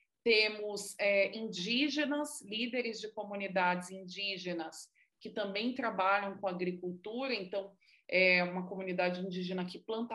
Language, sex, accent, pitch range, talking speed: Portuguese, female, Brazilian, 190-240 Hz, 110 wpm